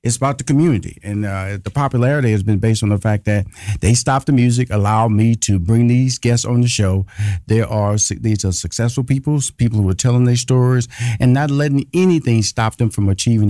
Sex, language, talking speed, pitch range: male, English, 215 wpm, 110-130 Hz